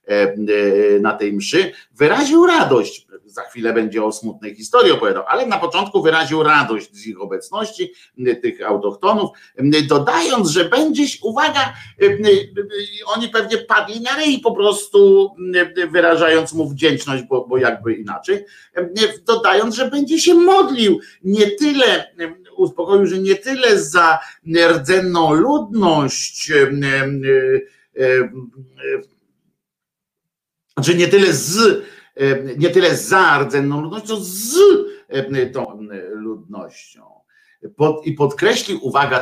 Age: 50-69